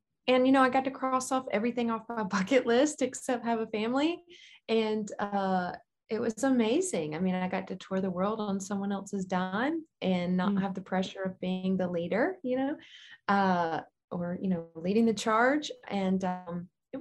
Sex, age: female, 20-39